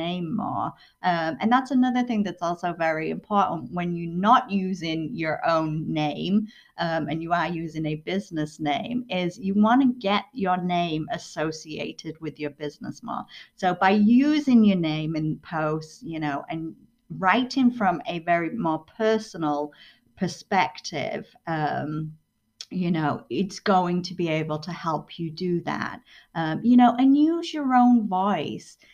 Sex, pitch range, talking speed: female, 155-200 Hz, 160 wpm